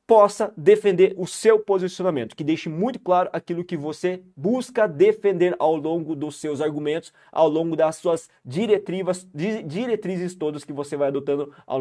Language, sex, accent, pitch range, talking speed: Portuguese, male, Brazilian, 155-205 Hz, 155 wpm